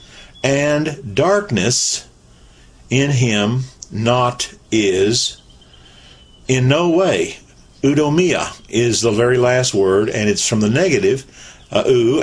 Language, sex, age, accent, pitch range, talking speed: English, male, 50-69, American, 110-145 Hz, 105 wpm